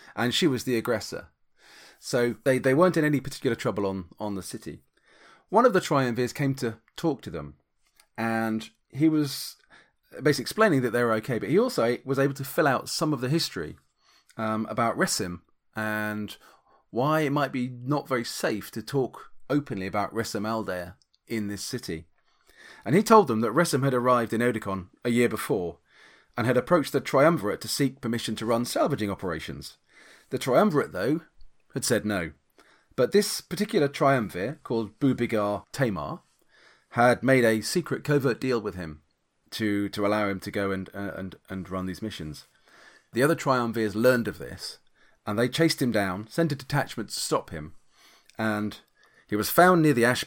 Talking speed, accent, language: 180 wpm, British, English